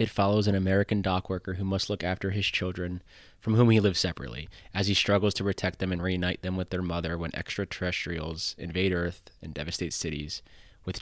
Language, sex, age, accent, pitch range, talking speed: English, male, 20-39, American, 85-95 Hz, 200 wpm